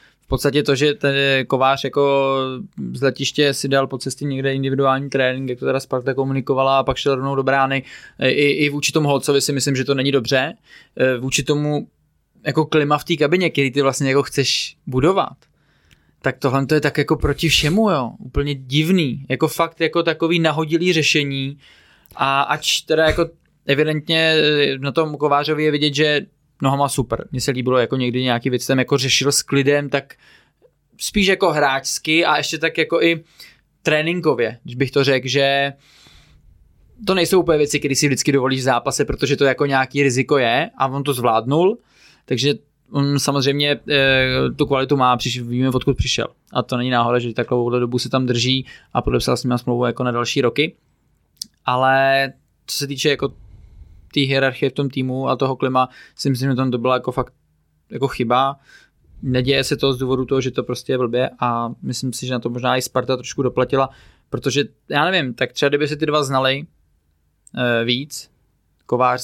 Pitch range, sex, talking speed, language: 130-145 Hz, male, 185 wpm, Czech